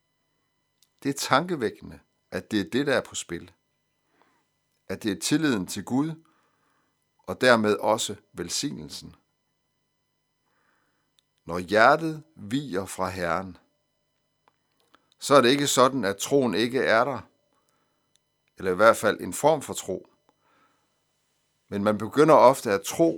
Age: 60-79